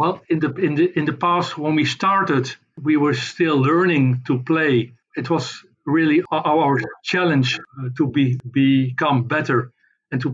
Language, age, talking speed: English, 50-69, 165 wpm